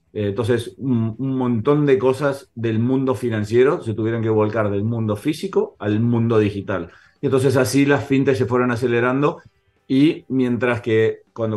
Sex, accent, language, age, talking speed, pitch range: male, Argentinian, Spanish, 30-49, 150 wpm, 110-125 Hz